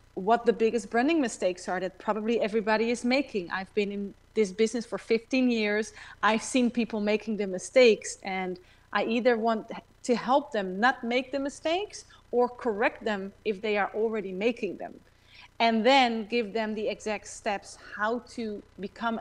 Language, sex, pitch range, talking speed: English, female, 190-240 Hz, 170 wpm